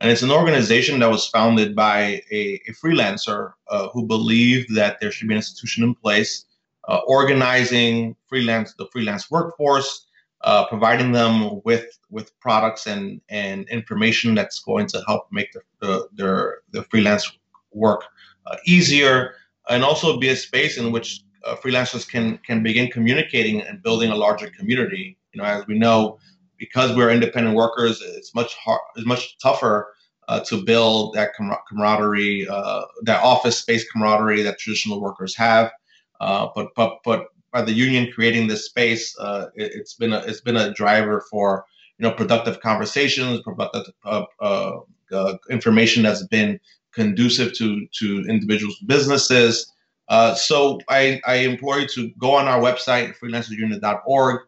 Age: 30-49